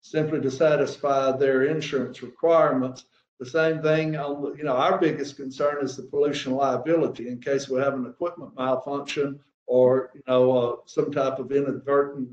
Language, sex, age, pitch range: English, male, 60-79, 130-150 Hz